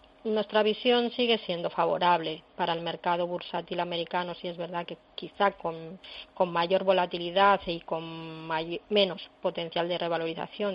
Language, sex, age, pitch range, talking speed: Spanish, female, 30-49, 170-190 Hz, 145 wpm